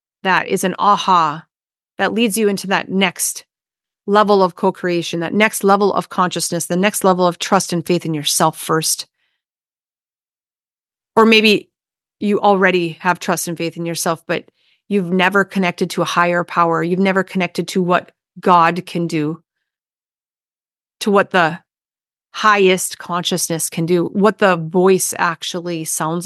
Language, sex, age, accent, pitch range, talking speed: English, female, 40-59, American, 170-200 Hz, 150 wpm